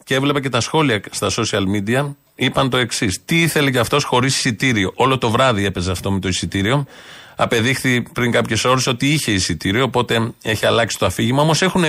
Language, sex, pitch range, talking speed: Greek, male, 120-160 Hz, 195 wpm